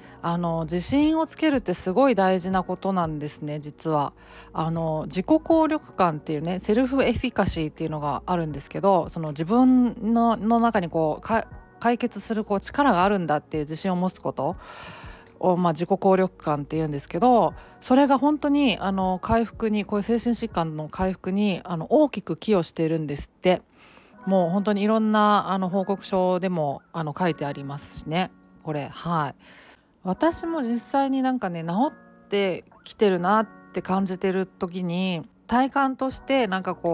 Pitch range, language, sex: 170-220 Hz, Japanese, female